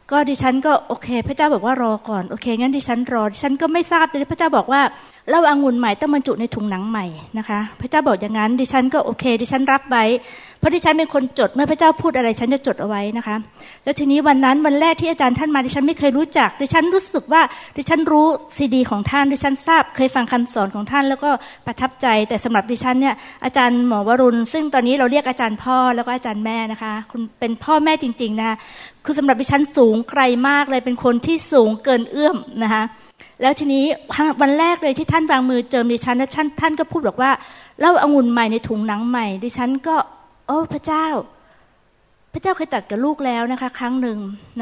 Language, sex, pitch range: Thai, female, 230-290 Hz